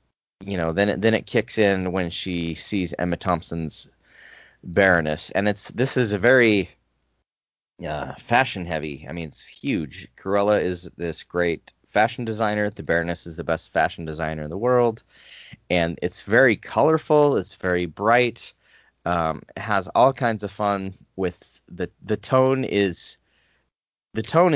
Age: 20-39